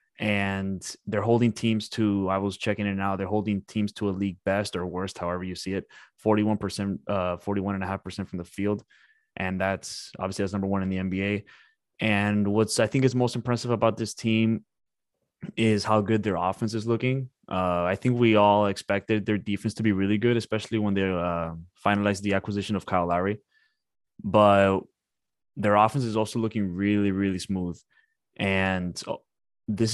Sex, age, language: male, 20-39, English